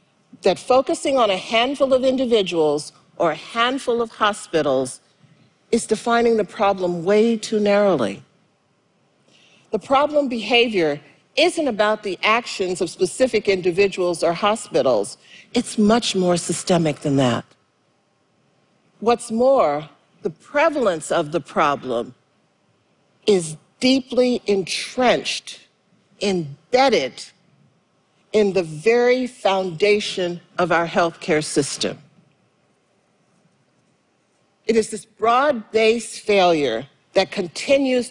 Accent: American